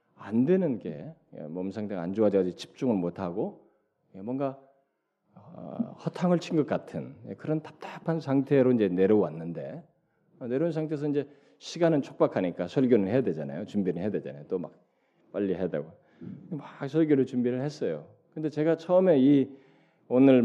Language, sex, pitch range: Korean, male, 105-165 Hz